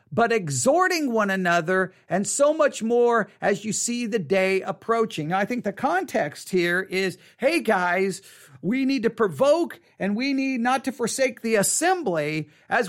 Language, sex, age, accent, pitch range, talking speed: English, male, 50-69, American, 185-245 Hz, 165 wpm